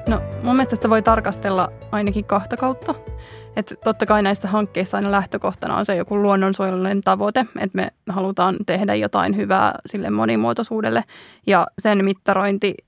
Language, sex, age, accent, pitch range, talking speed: Finnish, female, 20-39, native, 195-215 Hz, 145 wpm